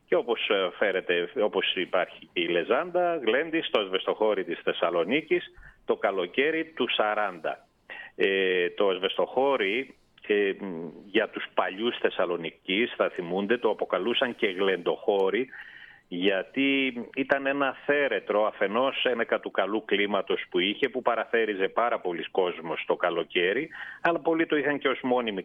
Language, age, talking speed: Greek, 40-59, 130 wpm